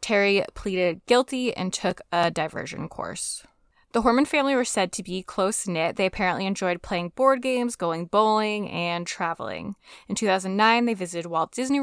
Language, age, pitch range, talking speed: English, 10-29, 185-235 Hz, 165 wpm